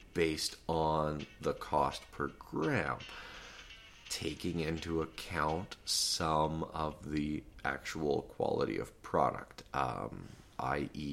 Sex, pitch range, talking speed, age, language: male, 75-85 Hz, 95 wpm, 30-49, English